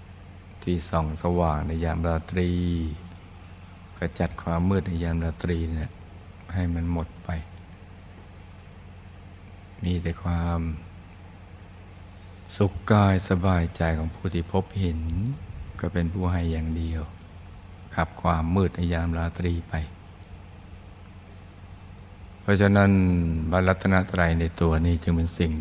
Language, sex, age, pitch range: Thai, male, 60-79, 85-95 Hz